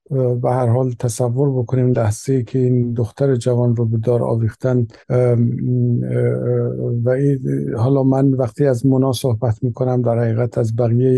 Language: Persian